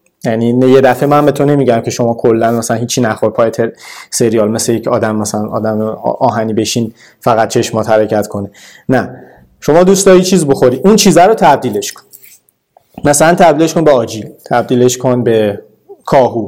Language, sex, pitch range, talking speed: Persian, male, 120-165 Hz, 165 wpm